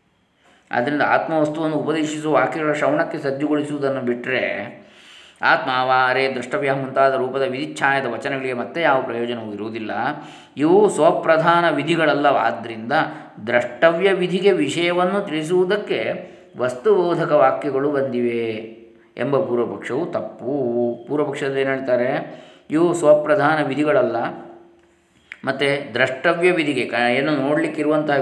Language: Kannada